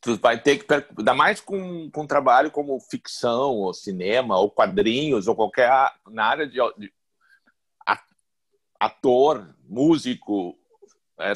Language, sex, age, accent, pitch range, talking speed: Portuguese, male, 60-79, Brazilian, 110-160 Hz, 125 wpm